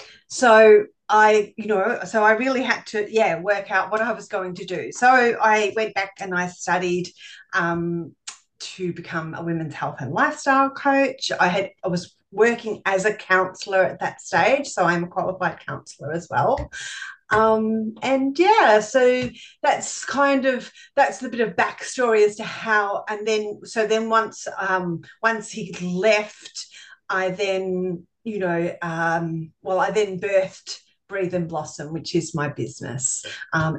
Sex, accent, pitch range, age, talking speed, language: female, Australian, 175-220 Hz, 40-59, 165 wpm, English